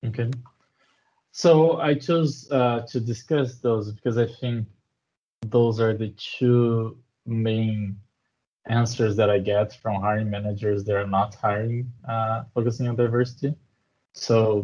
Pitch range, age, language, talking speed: 110-125 Hz, 20-39, English, 130 wpm